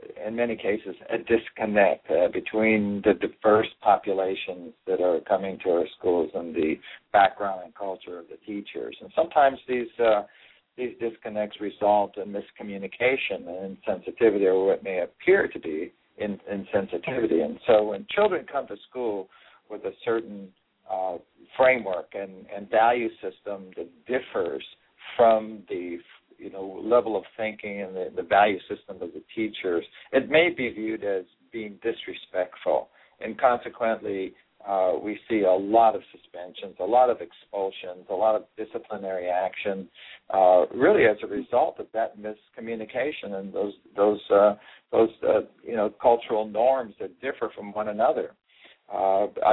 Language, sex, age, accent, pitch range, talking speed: English, male, 60-79, American, 100-120 Hz, 150 wpm